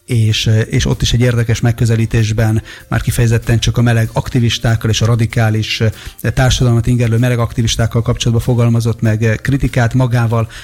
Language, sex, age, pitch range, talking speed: Hungarian, male, 30-49, 115-130 Hz, 140 wpm